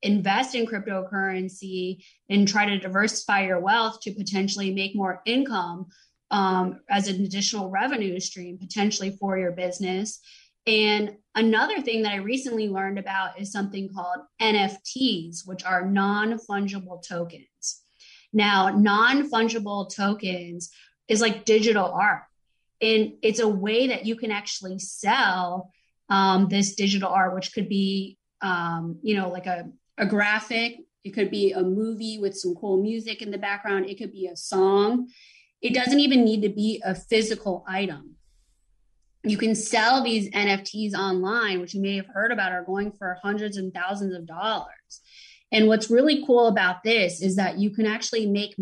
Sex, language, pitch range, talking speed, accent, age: female, English, 190-220 Hz, 160 wpm, American, 20-39